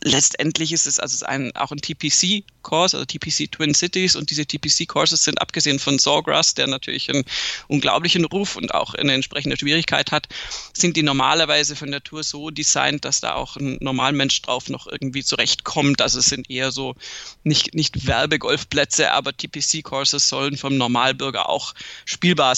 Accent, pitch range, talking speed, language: German, 145-175 Hz, 165 wpm, German